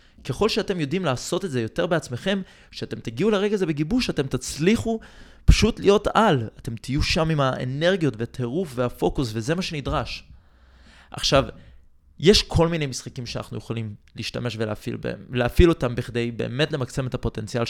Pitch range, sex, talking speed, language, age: 115-160 Hz, male, 150 wpm, Hebrew, 20-39